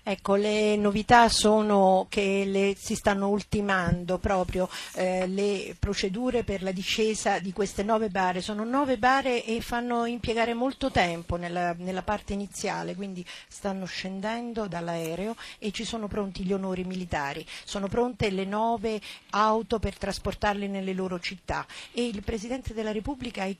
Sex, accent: female, native